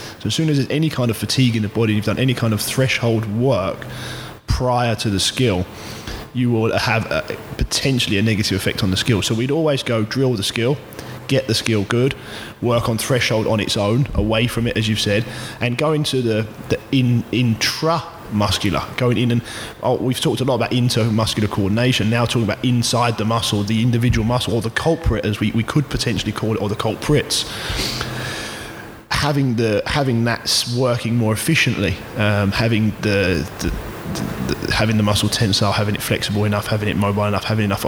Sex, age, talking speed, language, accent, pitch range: male, 20-39, 195 wpm, English, British, 105-120 Hz